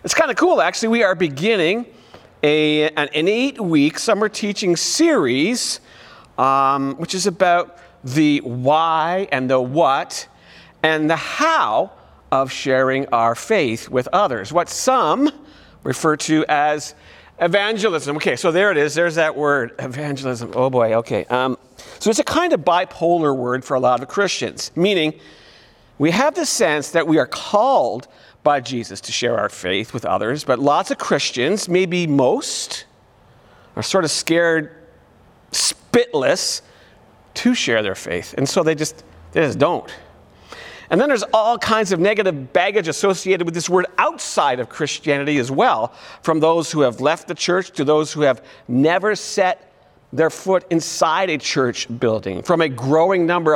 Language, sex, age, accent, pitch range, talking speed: English, male, 50-69, American, 135-185 Hz, 160 wpm